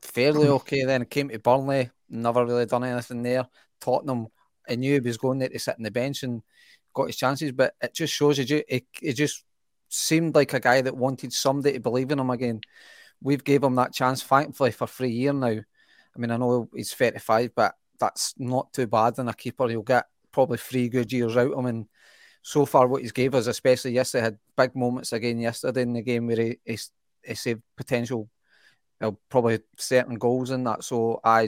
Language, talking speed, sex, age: English, 210 wpm, male, 30-49